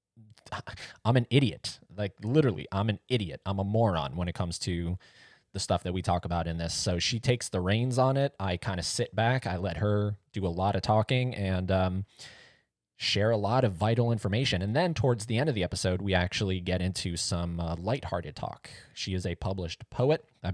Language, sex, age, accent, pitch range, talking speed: English, male, 20-39, American, 90-115 Hz, 215 wpm